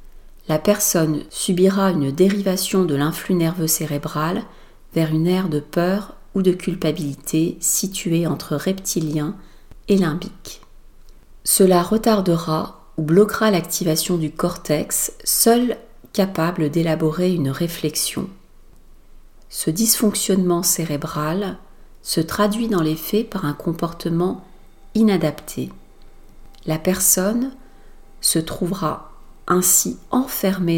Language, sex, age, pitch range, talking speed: French, female, 40-59, 155-195 Hz, 100 wpm